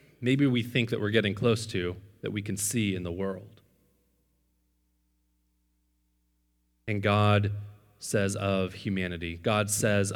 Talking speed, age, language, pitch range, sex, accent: 130 wpm, 30-49, English, 80-115 Hz, male, American